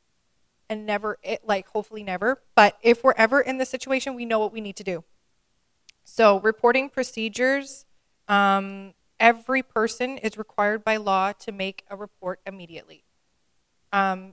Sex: female